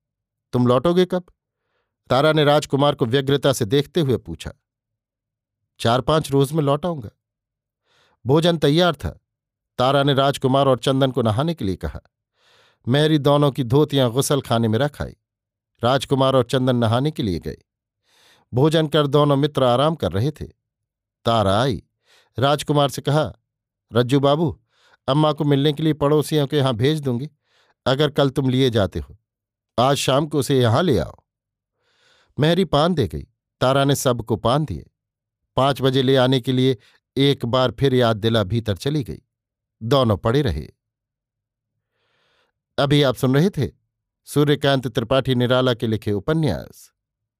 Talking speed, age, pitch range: 150 wpm, 50-69, 115-145 Hz